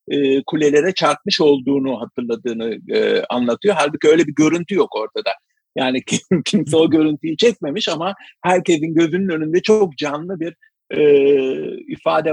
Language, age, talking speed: Turkish, 50-69, 115 wpm